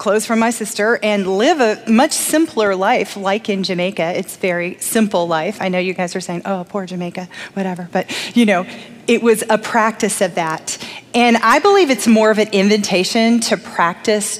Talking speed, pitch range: 190 wpm, 205-290 Hz